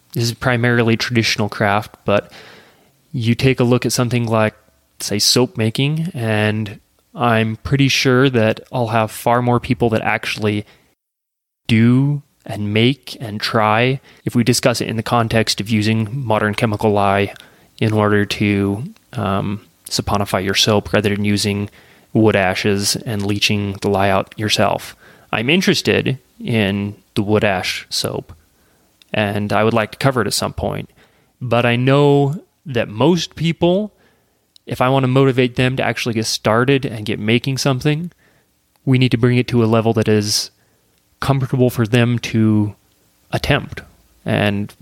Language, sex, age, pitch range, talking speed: English, male, 20-39, 105-130 Hz, 155 wpm